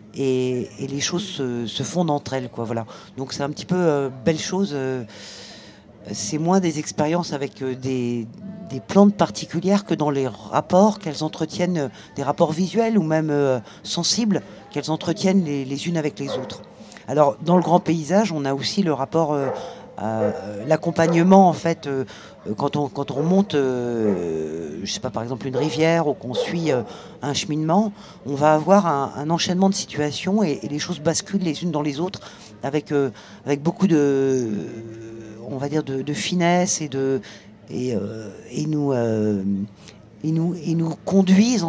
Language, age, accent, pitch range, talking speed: French, 50-69, French, 120-170 Hz, 185 wpm